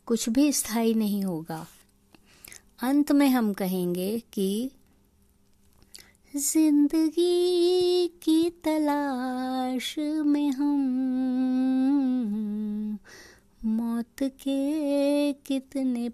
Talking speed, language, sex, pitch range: 65 wpm, Hindi, female, 190-255 Hz